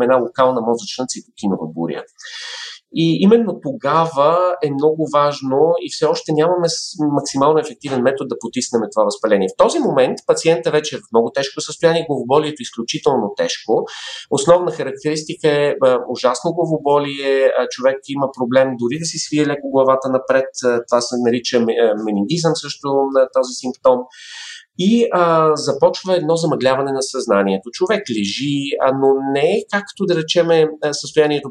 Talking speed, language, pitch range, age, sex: 145 wpm, Bulgarian, 125-160 Hz, 40-59, male